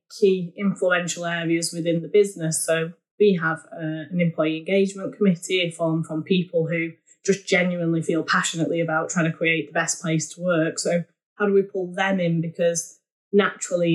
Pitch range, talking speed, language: 160-185 Hz, 170 wpm, English